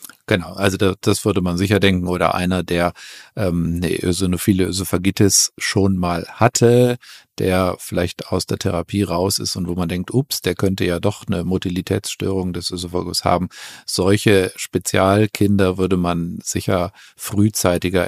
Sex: male